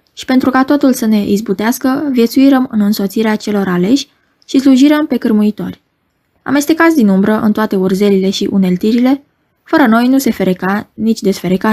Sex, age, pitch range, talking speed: female, 20-39, 205-265 Hz, 160 wpm